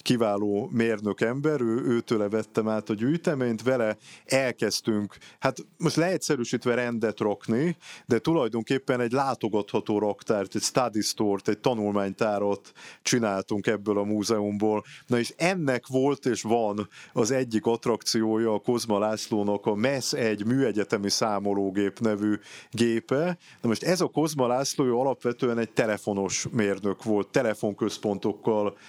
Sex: male